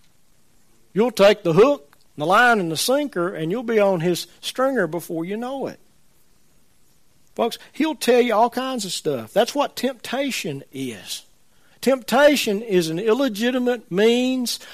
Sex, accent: male, American